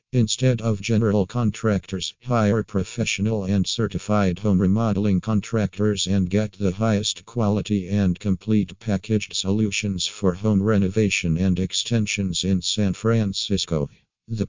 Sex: male